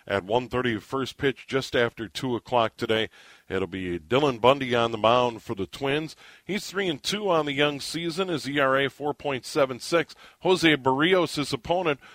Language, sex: English, male